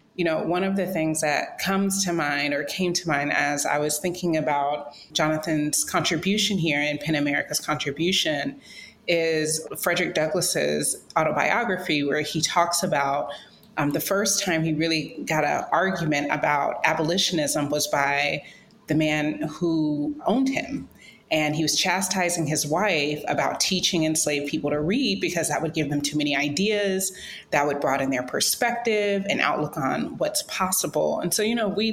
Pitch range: 150-190 Hz